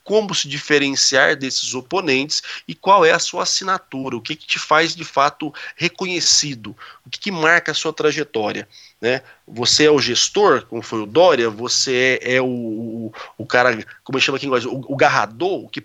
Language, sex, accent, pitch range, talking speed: Portuguese, male, Brazilian, 130-165 Hz, 190 wpm